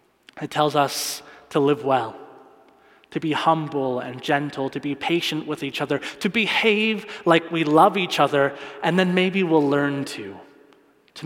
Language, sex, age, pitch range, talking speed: English, male, 30-49, 150-195 Hz, 165 wpm